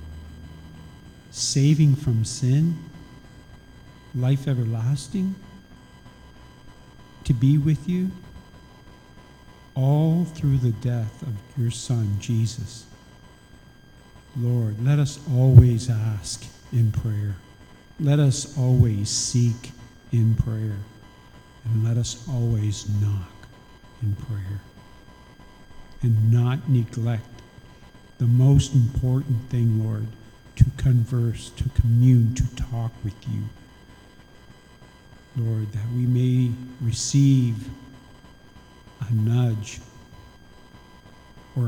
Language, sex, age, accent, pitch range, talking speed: English, male, 50-69, American, 110-125 Hz, 90 wpm